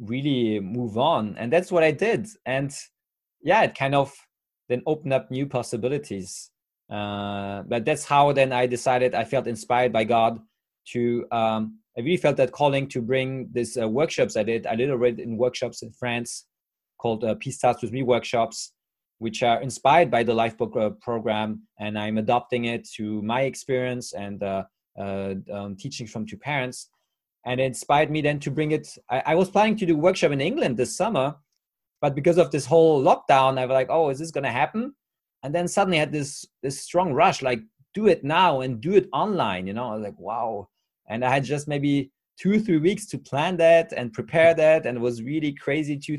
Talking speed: 205 wpm